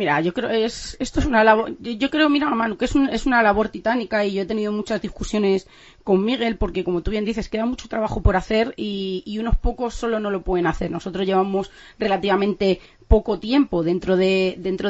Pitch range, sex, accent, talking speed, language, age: 195-245 Hz, female, Spanish, 175 wpm, Spanish, 30-49